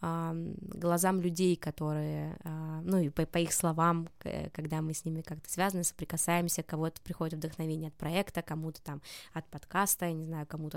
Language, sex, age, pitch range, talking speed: Russian, female, 20-39, 165-195 Hz, 155 wpm